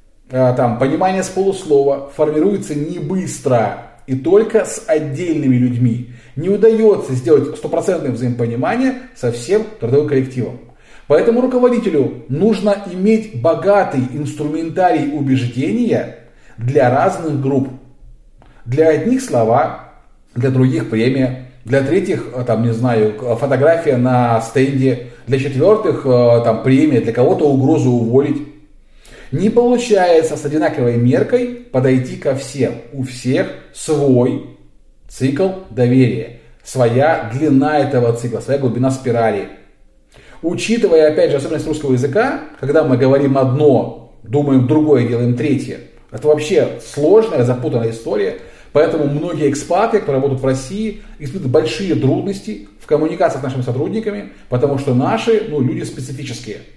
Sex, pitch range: male, 125-165 Hz